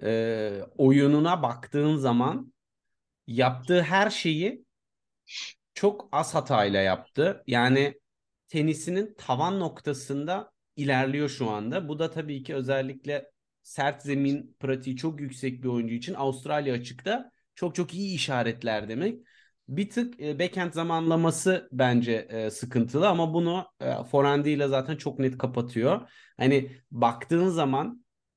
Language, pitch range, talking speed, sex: Turkish, 125-160 Hz, 115 wpm, male